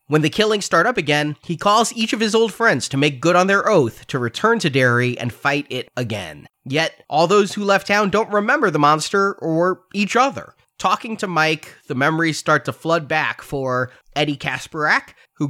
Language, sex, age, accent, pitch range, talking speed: English, male, 30-49, American, 135-190 Hz, 205 wpm